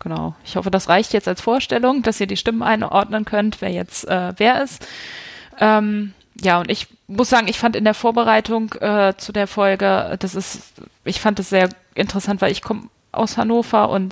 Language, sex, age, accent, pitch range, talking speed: German, female, 20-39, German, 180-215 Hz, 200 wpm